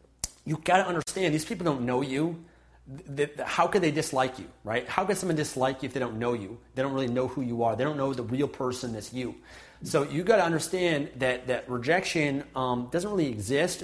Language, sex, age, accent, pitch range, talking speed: English, male, 30-49, American, 125-165 Hz, 215 wpm